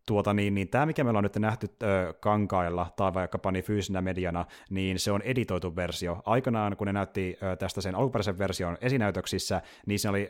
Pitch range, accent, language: 90-110 Hz, native, Finnish